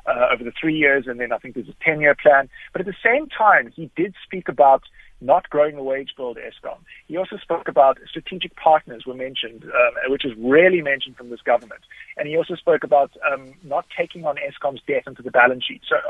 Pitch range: 135-180 Hz